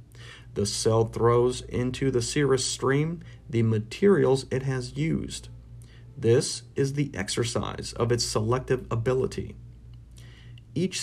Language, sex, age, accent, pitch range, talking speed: English, male, 40-59, American, 115-135 Hz, 115 wpm